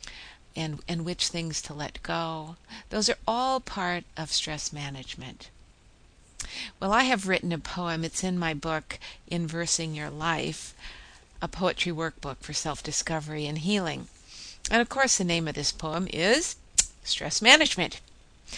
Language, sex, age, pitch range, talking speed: English, female, 50-69, 155-190 Hz, 145 wpm